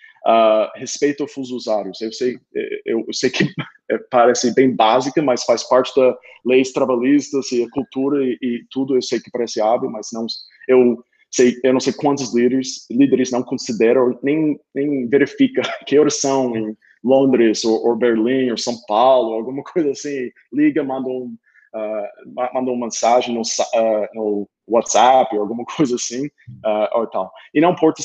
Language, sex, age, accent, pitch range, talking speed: Portuguese, male, 20-39, Brazilian, 115-140 Hz, 165 wpm